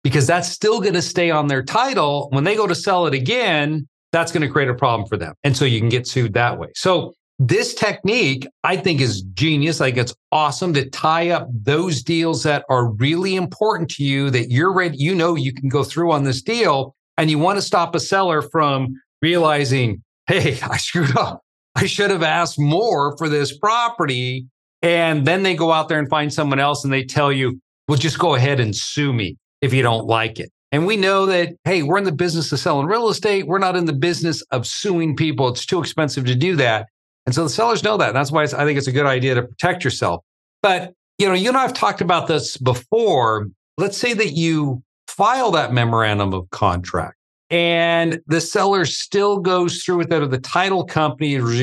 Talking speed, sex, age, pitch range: 215 wpm, male, 40-59, 130-170 Hz